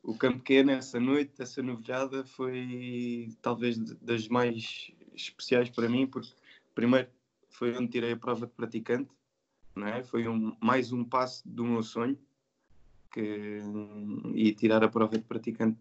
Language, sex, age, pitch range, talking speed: Portuguese, male, 20-39, 110-130 Hz, 150 wpm